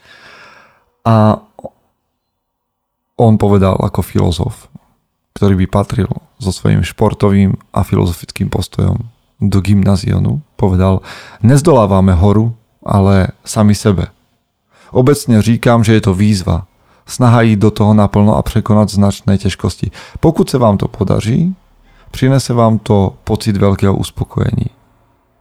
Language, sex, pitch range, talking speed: Slovak, male, 100-115 Hz, 115 wpm